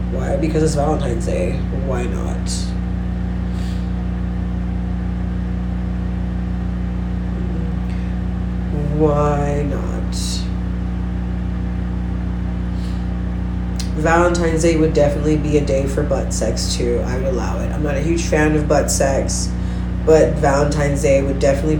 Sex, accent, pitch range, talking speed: female, American, 95-155 Hz, 100 wpm